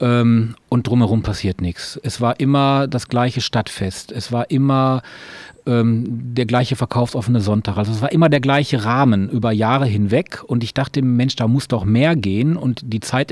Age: 40-59